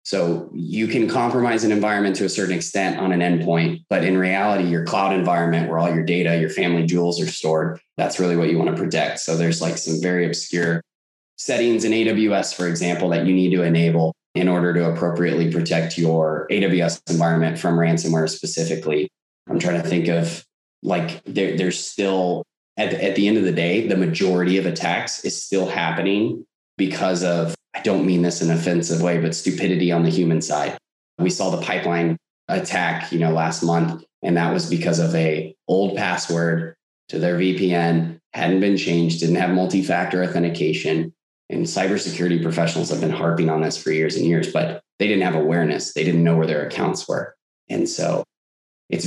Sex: male